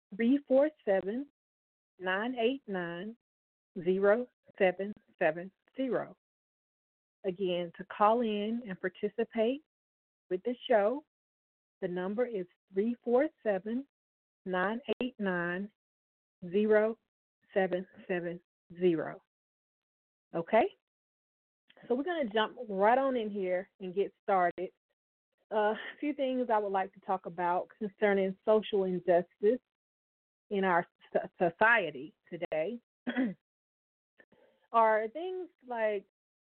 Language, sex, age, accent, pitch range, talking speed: English, female, 40-59, American, 190-250 Hz, 75 wpm